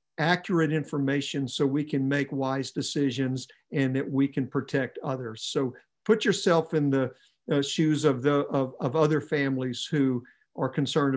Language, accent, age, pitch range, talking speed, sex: English, American, 50-69, 135-160 Hz, 160 wpm, male